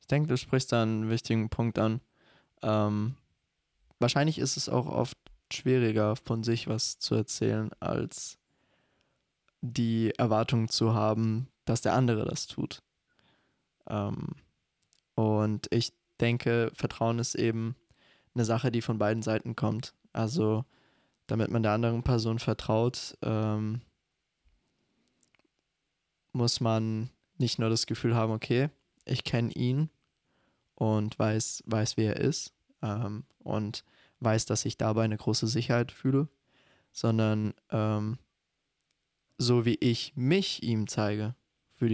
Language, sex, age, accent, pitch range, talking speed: German, male, 20-39, German, 110-125 Hz, 125 wpm